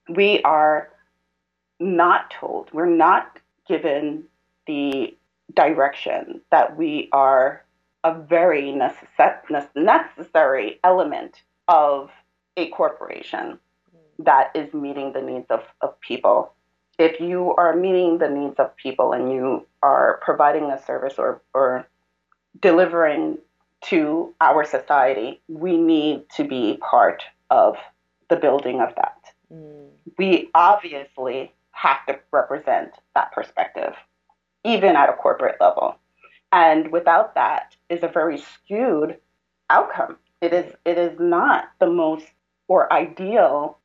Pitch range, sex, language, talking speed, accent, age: 135-175 Hz, female, English, 120 wpm, American, 30-49